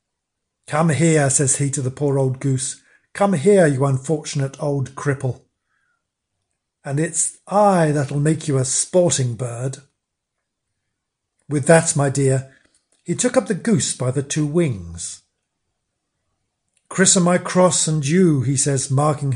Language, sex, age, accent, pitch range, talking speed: English, male, 50-69, British, 140-185 Hz, 140 wpm